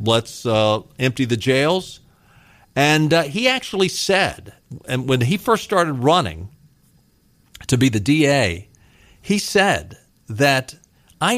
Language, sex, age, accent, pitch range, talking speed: English, male, 50-69, American, 115-165 Hz, 125 wpm